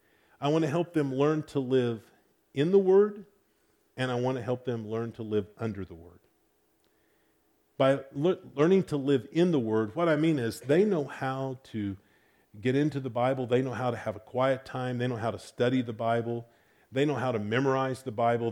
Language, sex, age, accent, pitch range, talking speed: English, male, 50-69, American, 110-140 Hz, 205 wpm